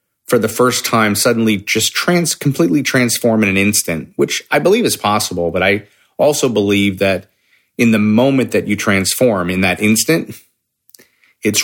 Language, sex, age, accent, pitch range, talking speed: English, male, 30-49, American, 95-120 Hz, 165 wpm